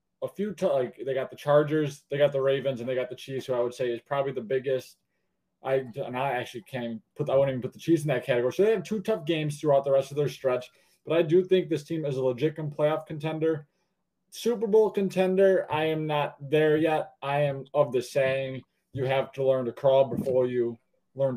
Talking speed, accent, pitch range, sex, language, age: 245 wpm, American, 135-165 Hz, male, English, 20-39